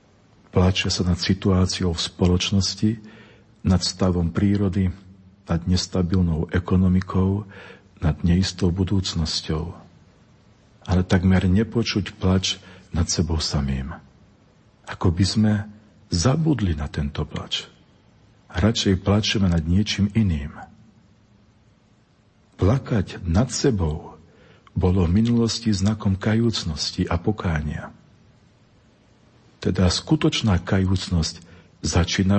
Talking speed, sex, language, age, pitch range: 90 wpm, male, Slovak, 50-69, 85-105 Hz